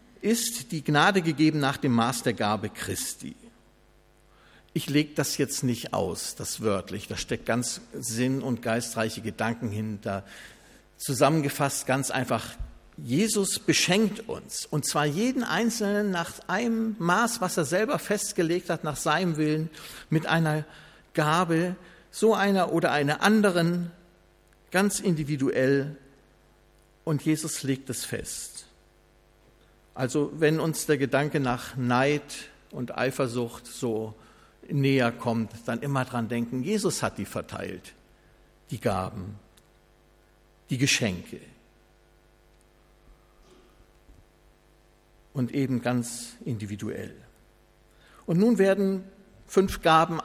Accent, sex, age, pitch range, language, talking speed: German, male, 50-69, 125-175 Hz, German, 115 wpm